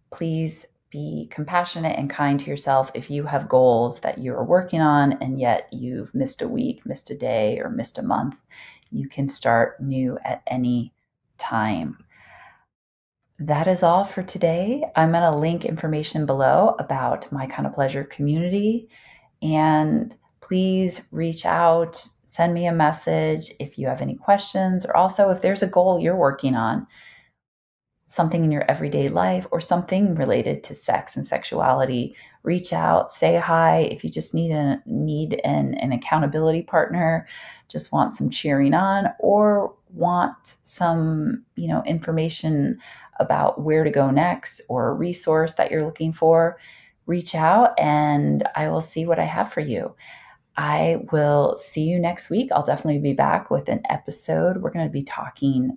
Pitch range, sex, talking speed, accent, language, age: 135-175 Hz, female, 165 wpm, American, English, 30-49